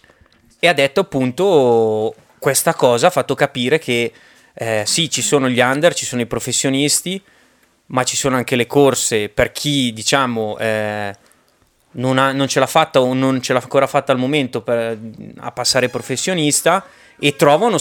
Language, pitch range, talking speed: Italian, 115-140 Hz, 170 wpm